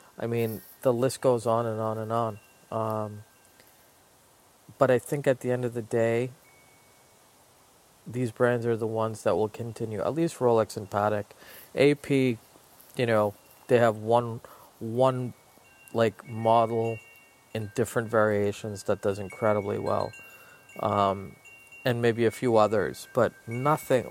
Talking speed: 140 wpm